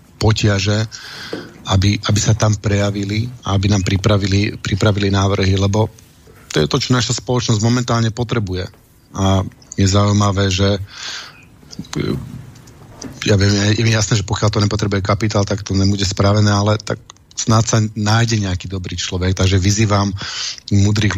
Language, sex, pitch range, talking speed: Slovak, male, 95-110 Hz, 140 wpm